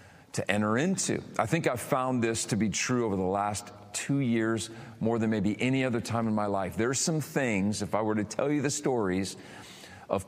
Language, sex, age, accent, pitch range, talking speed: English, male, 40-59, American, 100-135 Hz, 215 wpm